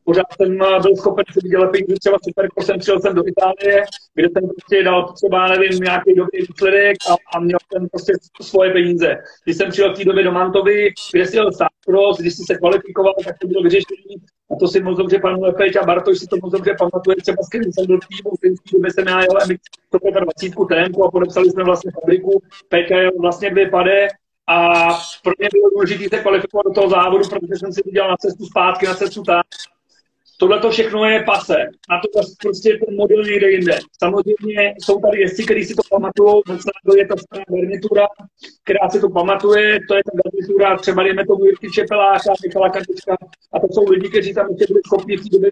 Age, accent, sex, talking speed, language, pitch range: 40-59, native, male, 205 wpm, Czech, 185-205 Hz